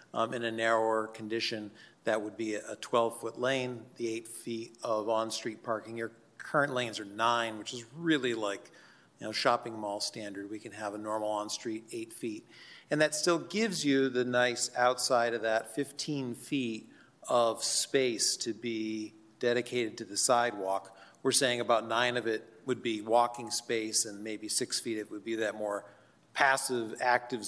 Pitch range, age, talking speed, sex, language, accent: 110-125 Hz, 40-59, 175 wpm, male, English, American